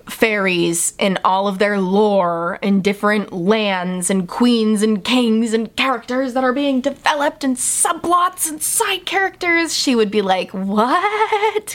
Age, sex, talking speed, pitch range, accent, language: 20-39, female, 150 wpm, 185-270 Hz, American, English